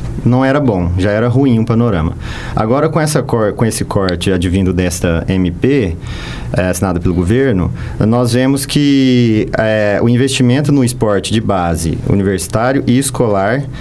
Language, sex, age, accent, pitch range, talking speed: Portuguese, male, 40-59, Brazilian, 95-130 Hz, 150 wpm